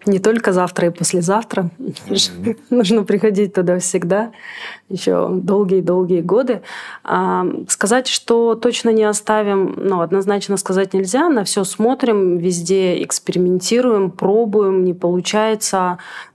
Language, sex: Russian, female